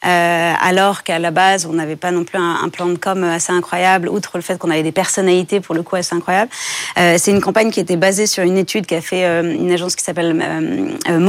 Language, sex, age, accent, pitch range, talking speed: French, female, 30-49, French, 170-195 Hz, 255 wpm